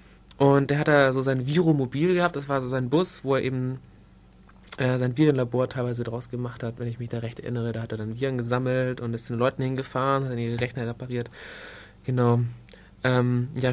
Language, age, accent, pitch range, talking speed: German, 20-39, German, 120-145 Hz, 215 wpm